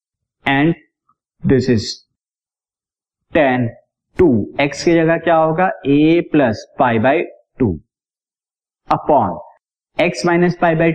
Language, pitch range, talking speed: Hindi, 125-160 Hz, 110 wpm